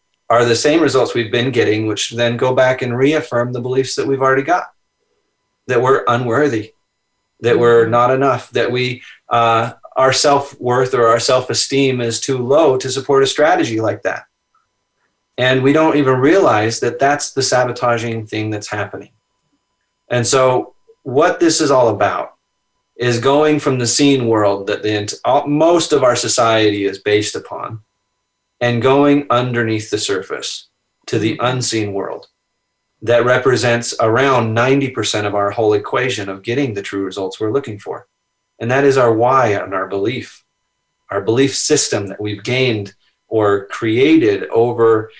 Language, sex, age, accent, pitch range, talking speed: English, male, 30-49, American, 110-135 Hz, 155 wpm